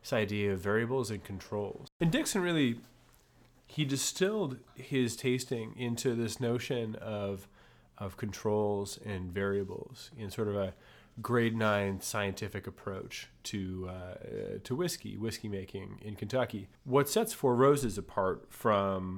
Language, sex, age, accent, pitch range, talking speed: English, male, 30-49, American, 95-115 Hz, 135 wpm